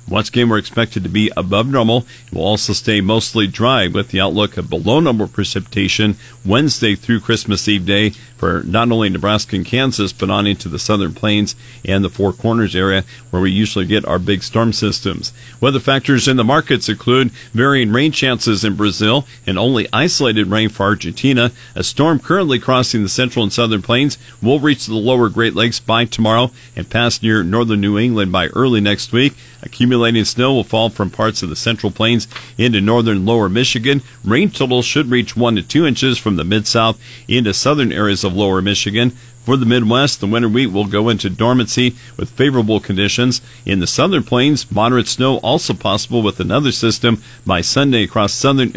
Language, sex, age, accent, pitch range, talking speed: English, male, 50-69, American, 105-125 Hz, 190 wpm